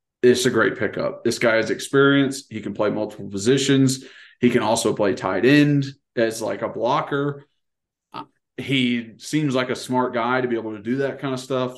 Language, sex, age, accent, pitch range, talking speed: English, male, 30-49, American, 115-145 Hz, 195 wpm